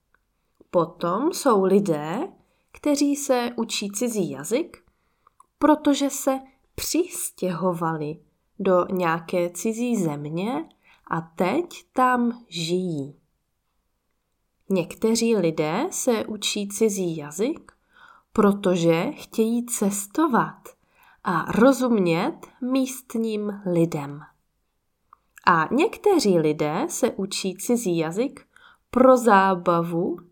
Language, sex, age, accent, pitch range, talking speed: Czech, female, 20-39, native, 175-255 Hz, 80 wpm